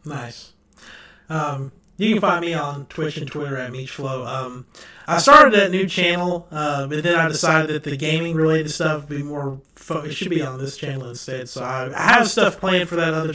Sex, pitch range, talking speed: male, 145-170 Hz, 205 wpm